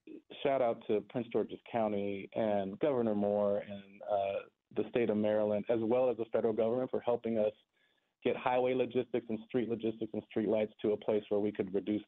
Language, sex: English, male